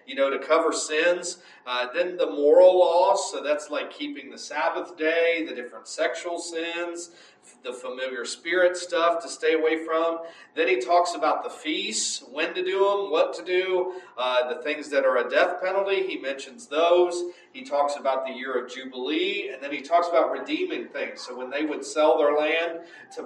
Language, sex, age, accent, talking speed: English, male, 40-59, American, 195 wpm